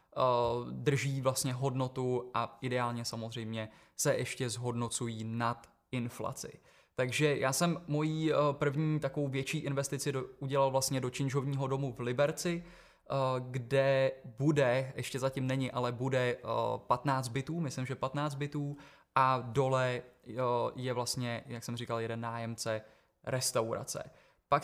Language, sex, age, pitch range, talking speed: Czech, male, 20-39, 125-145 Hz, 120 wpm